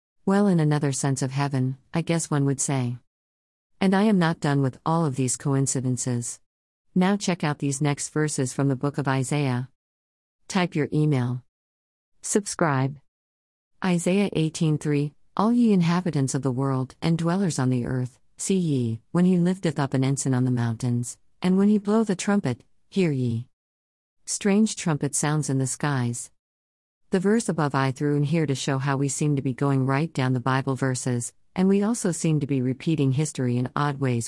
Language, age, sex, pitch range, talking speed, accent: English, 50-69, female, 125-165 Hz, 185 wpm, American